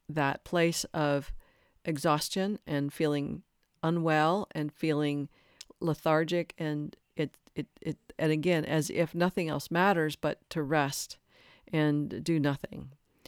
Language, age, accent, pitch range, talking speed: English, 50-69, American, 155-180 Hz, 120 wpm